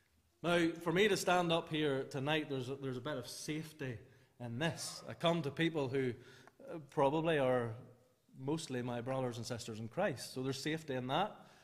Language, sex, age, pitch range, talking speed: English, male, 30-49, 120-150 Hz, 180 wpm